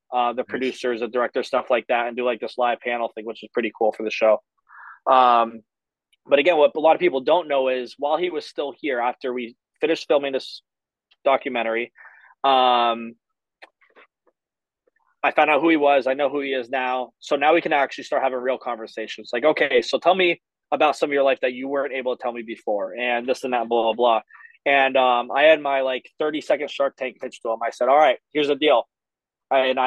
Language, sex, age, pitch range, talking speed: English, male, 20-39, 120-145 Hz, 225 wpm